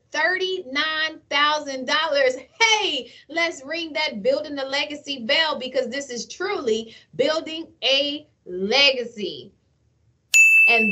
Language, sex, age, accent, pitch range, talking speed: English, female, 20-39, American, 270-360 Hz, 90 wpm